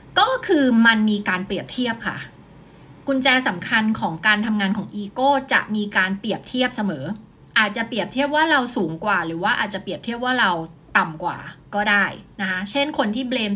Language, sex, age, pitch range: Thai, female, 30-49, 210-295 Hz